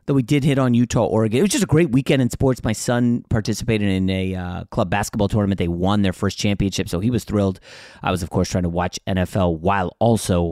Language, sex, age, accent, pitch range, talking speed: English, male, 30-49, American, 95-135 Hz, 245 wpm